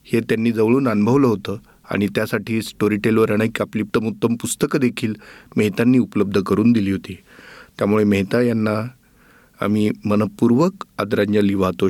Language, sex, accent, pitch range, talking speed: Marathi, male, native, 105-120 Hz, 100 wpm